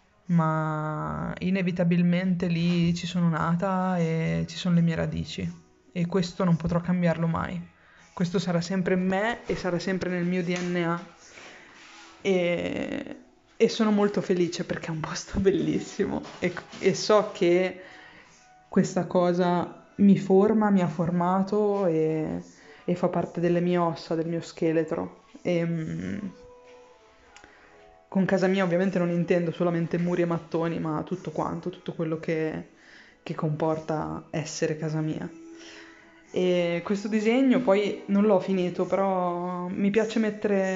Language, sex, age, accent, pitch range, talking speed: Italian, female, 20-39, native, 165-190 Hz, 135 wpm